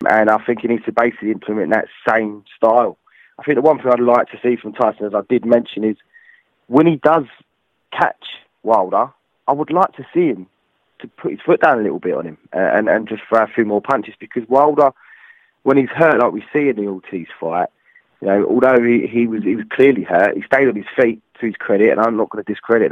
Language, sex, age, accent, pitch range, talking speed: English, male, 20-39, British, 110-135 Hz, 240 wpm